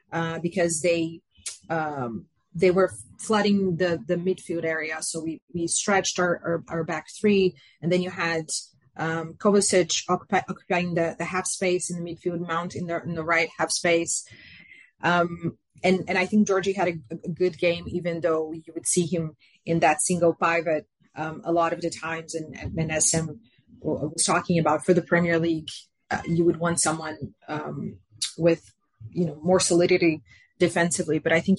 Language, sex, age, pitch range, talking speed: English, female, 30-49, 160-185 Hz, 180 wpm